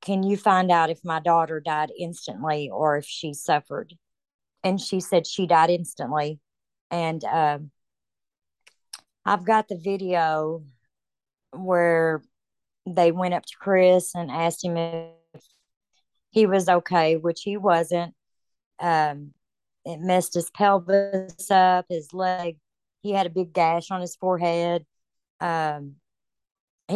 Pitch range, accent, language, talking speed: 160-190 Hz, American, English, 130 wpm